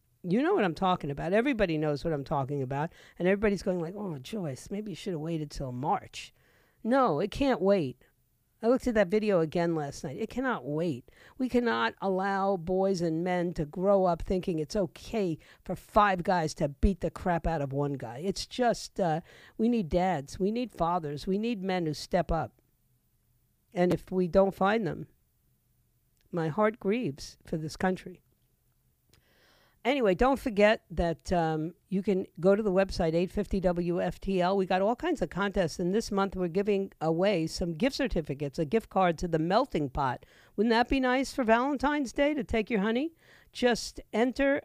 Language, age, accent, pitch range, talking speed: English, 50-69, American, 160-210 Hz, 185 wpm